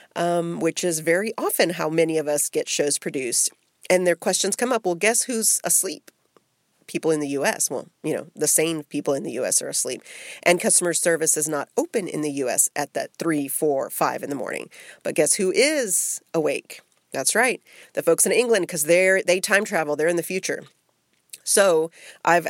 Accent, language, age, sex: American, English, 40-59, female